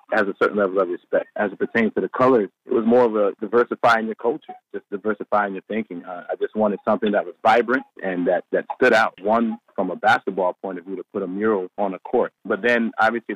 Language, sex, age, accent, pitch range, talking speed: English, male, 30-49, American, 95-110 Hz, 245 wpm